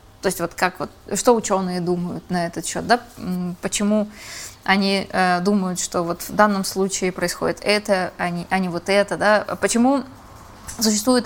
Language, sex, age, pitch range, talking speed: Russian, female, 20-39, 185-225 Hz, 165 wpm